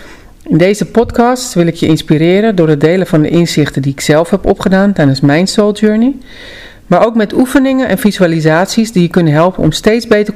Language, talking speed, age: Dutch, 205 wpm, 50-69